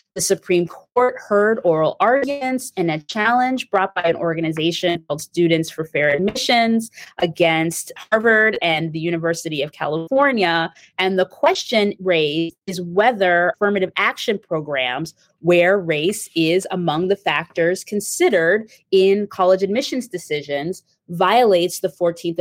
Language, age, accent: English, 20-39, American